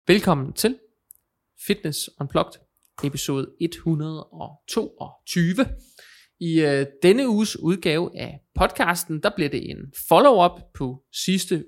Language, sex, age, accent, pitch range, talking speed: Danish, male, 20-39, native, 140-165 Hz, 105 wpm